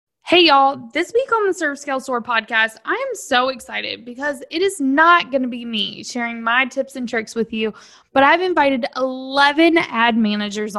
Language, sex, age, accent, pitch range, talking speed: English, female, 10-29, American, 225-300 Hz, 190 wpm